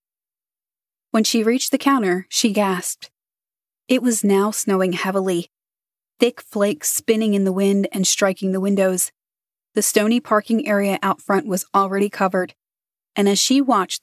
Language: English